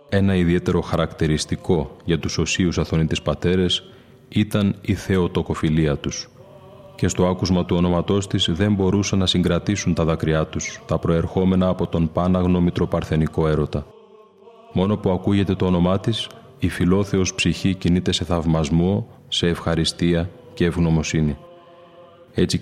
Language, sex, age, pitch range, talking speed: Greek, male, 30-49, 85-100 Hz, 130 wpm